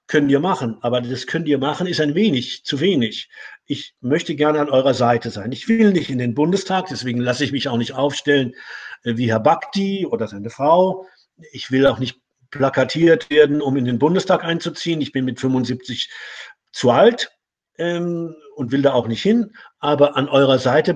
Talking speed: 190 wpm